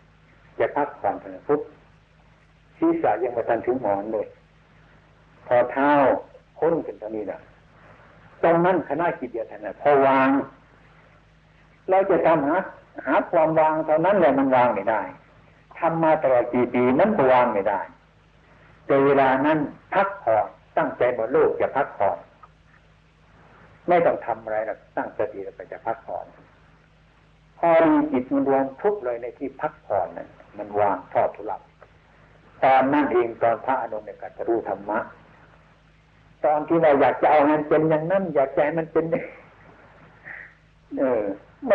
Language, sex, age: Thai, male, 60-79